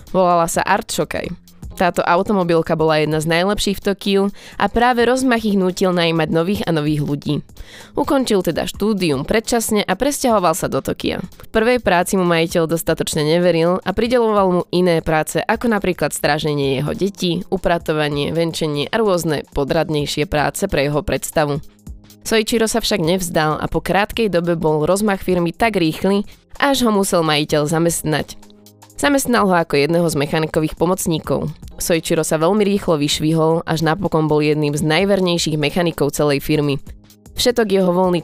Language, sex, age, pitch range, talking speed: Slovak, female, 20-39, 150-200 Hz, 155 wpm